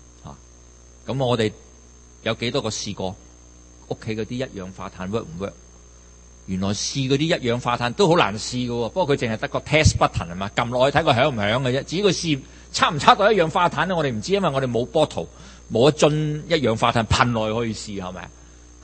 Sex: male